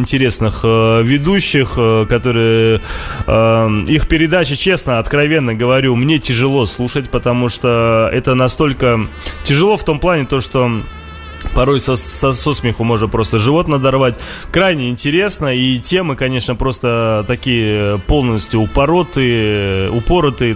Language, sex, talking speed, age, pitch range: Russian, male, 125 wpm, 20-39, 110-140 Hz